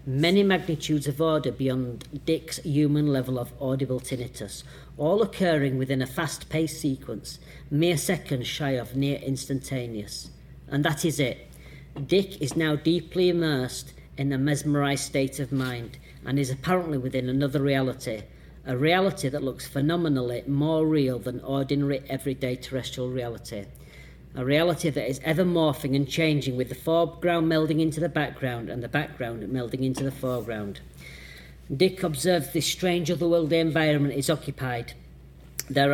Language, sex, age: English, female, 40-59